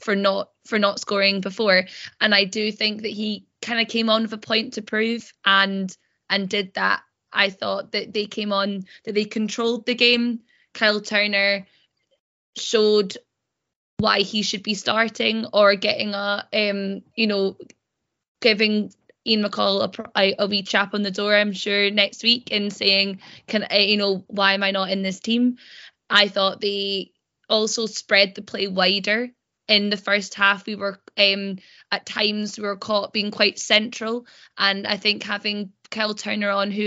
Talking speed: 175 wpm